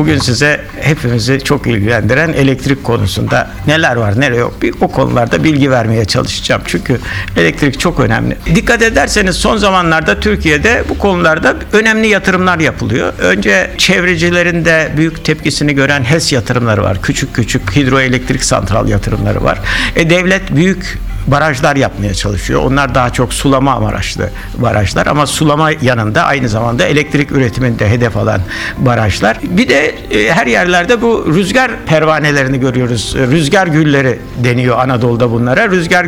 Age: 60-79